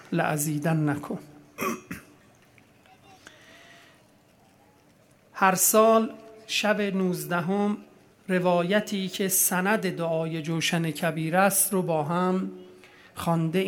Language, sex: Persian, male